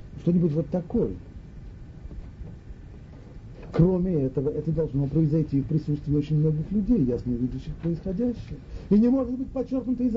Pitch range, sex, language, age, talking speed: 125-185 Hz, male, Russian, 40-59, 135 wpm